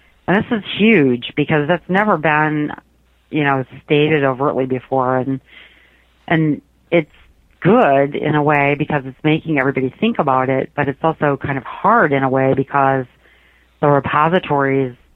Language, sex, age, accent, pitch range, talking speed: English, female, 40-59, American, 125-150 Hz, 155 wpm